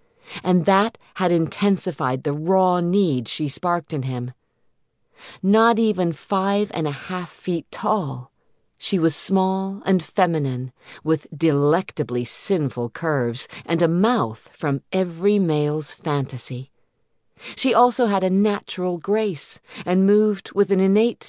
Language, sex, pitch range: English, female, 135-195 Hz